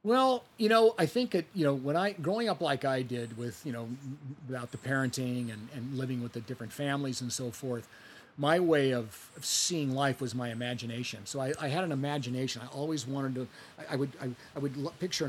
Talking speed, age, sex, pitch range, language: 230 wpm, 40-59, male, 125-150 Hz, English